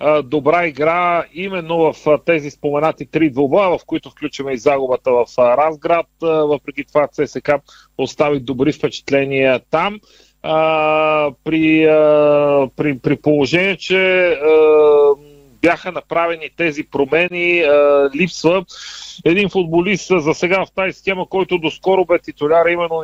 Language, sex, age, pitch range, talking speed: Bulgarian, male, 40-59, 145-170 Hz, 115 wpm